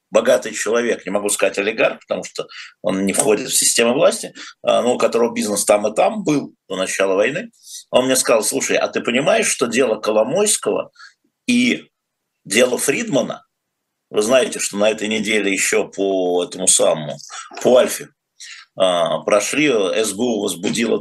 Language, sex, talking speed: Russian, male, 150 wpm